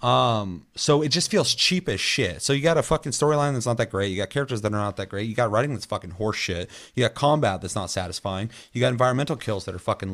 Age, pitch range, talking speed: 30-49, 100-120 Hz, 270 wpm